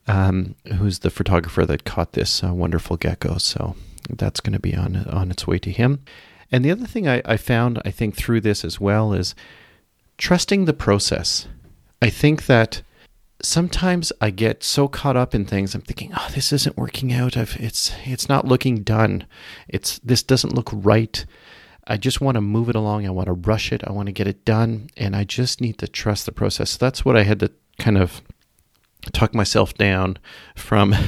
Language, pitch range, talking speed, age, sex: English, 95-125 Hz, 205 wpm, 40-59, male